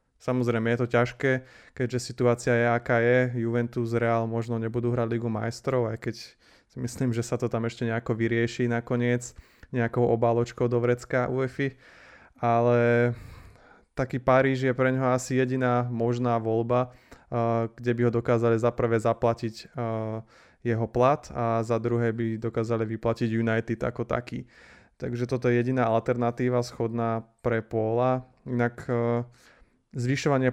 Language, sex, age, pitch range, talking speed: Slovak, male, 20-39, 115-125 Hz, 140 wpm